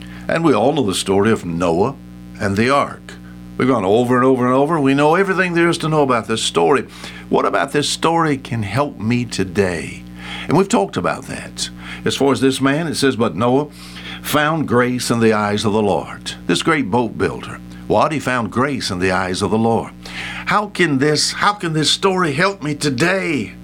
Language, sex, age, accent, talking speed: English, male, 60-79, American, 205 wpm